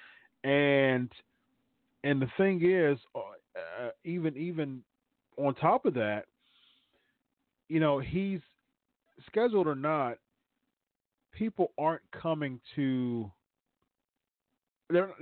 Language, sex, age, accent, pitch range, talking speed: English, male, 40-59, American, 120-155 Hz, 90 wpm